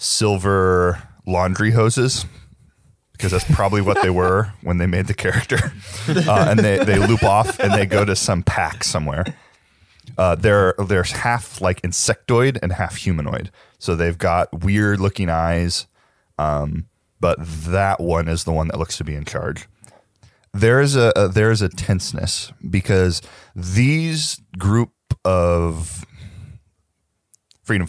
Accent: American